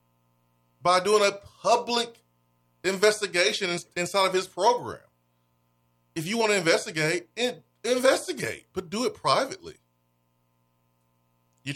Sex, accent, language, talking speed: male, American, English, 110 wpm